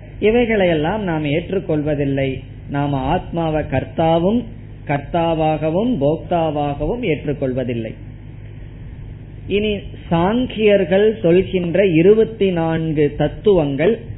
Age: 20-39